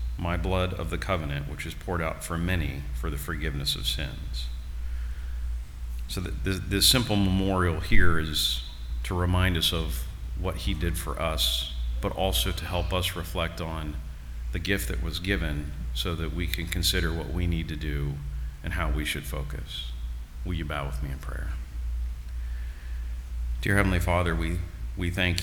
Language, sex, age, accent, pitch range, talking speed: English, male, 40-59, American, 65-85 Hz, 170 wpm